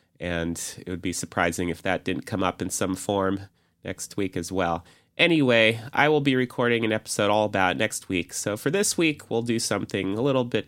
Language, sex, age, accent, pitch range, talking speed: English, male, 30-49, American, 95-125 Hz, 215 wpm